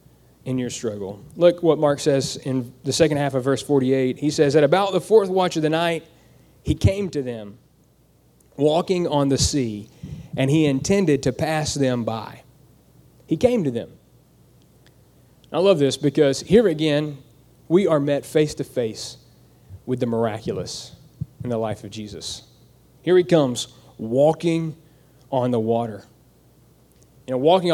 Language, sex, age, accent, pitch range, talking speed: English, male, 30-49, American, 130-160 Hz, 155 wpm